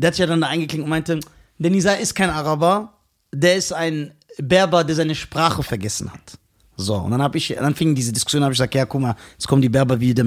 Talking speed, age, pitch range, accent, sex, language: 240 wpm, 40-59, 135-185 Hz, German, male, German